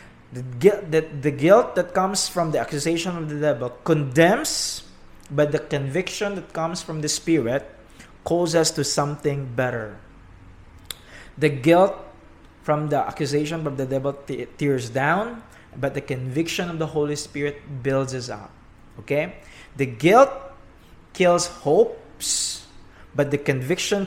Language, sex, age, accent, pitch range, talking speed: English, male, 20-39, Filipino, 130-170 Hz, 130 wpm